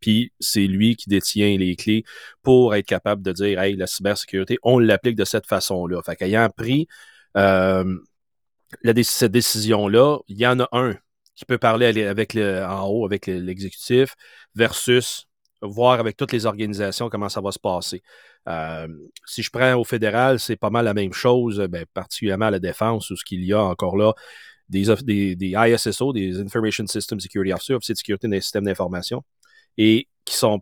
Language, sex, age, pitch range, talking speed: French, male, 30-49, 95-115 Hz, 190 wpm